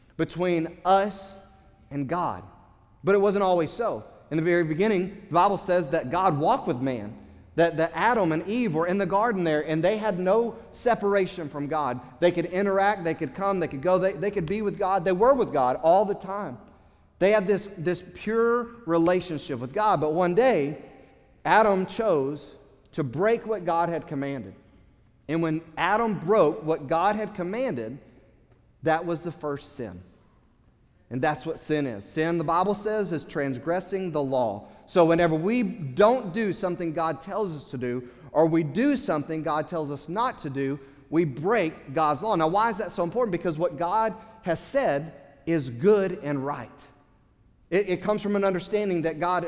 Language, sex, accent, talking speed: English, male, American, 185 wpm